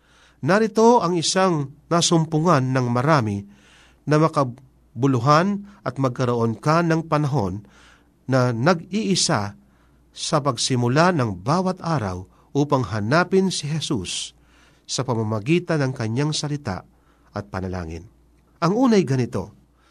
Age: 50-69